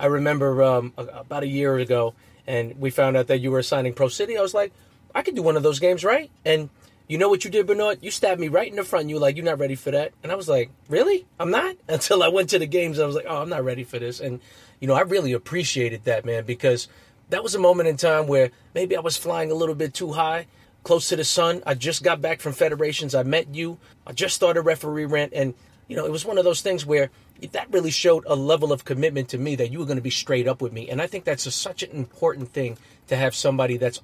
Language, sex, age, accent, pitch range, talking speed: English, male, 30-49, American, 125-165 Hz, 275 wpm